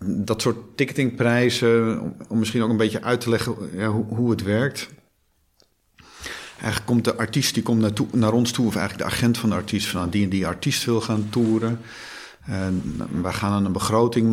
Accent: Dutch